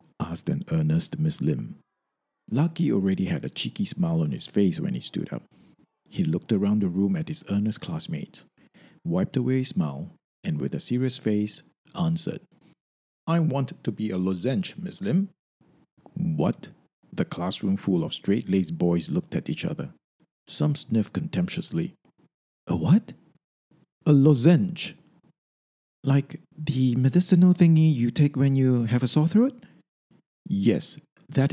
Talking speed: 145 wpm